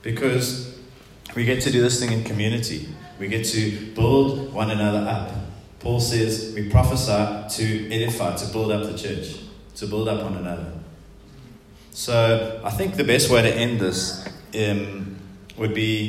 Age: 20-39